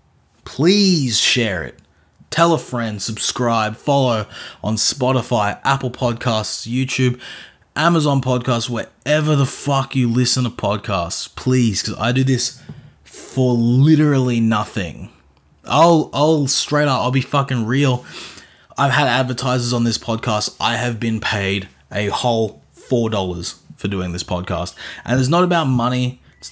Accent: Australian